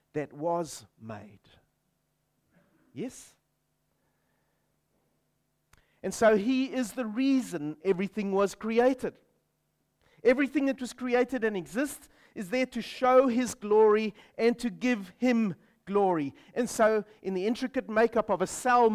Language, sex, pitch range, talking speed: English, male, 165-245 Hz, 125 wpm